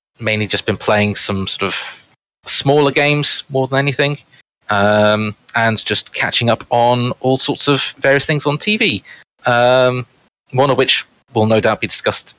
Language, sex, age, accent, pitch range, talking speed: English, male, 30-49, British, 100-120 Hz, 165 wpm